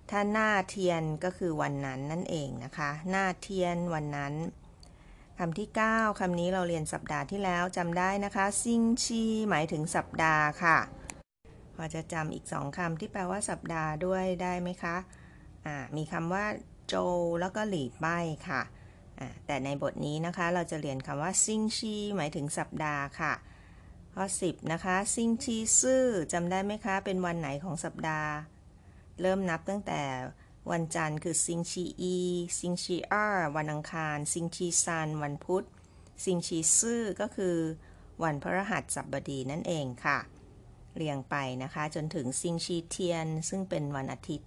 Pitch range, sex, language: 150-190 Hz, female, Chinese